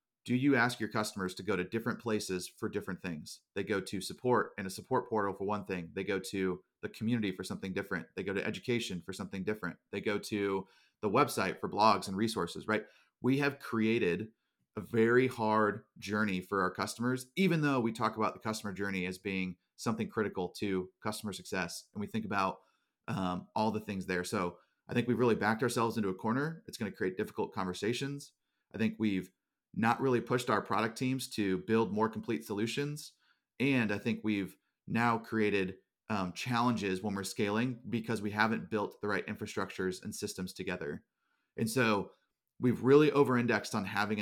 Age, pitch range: 30-49, 95-120 Hz